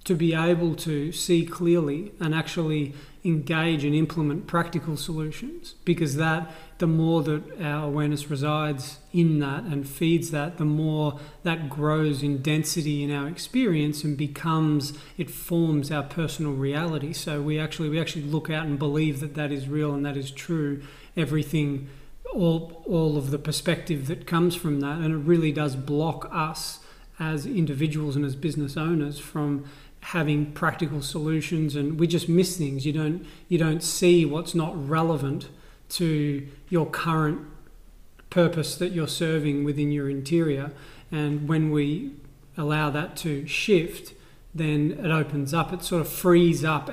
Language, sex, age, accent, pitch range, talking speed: English, male, 40-59, Australian, 145-165 Hz, 160 wpm